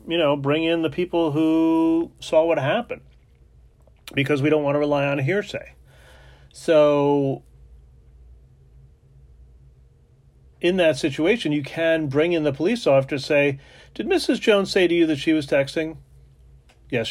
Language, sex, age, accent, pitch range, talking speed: English, male, 40-59, American, 125-165 Hz, 145 wpm